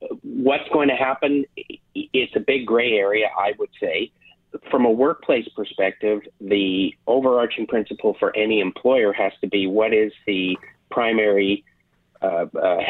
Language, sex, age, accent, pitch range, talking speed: English, male, 40-59, American, 100-140 Hz, 145 wpm